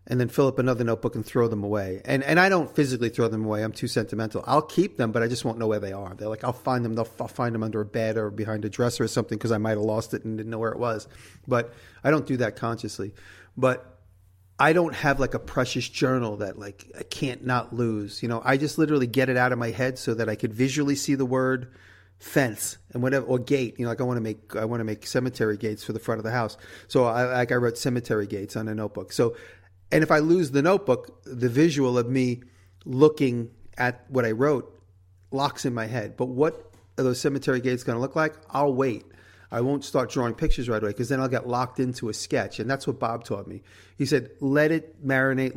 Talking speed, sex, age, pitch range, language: 255 wpm, male, 40-59, 110-130 Hz, English